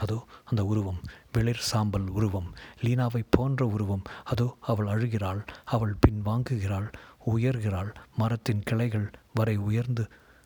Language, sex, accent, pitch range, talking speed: Tamil, male, native, 105-125 Hz, 115 wpm